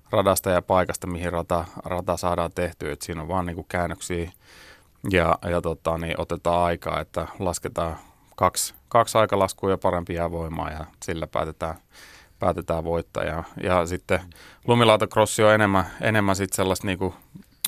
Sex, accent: male, native